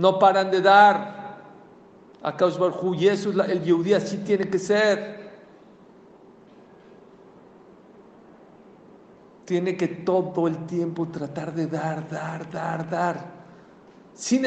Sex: male